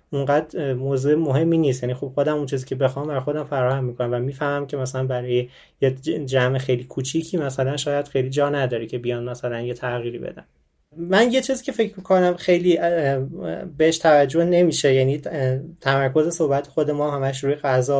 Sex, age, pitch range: male, 20-39, 130-155 Hz